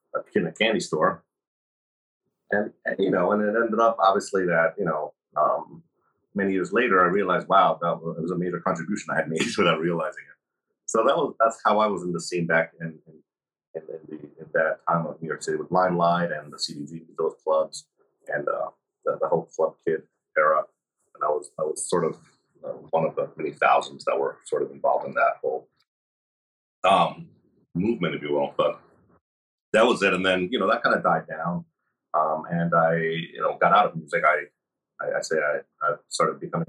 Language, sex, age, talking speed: English, male, 30-49, 200 wpm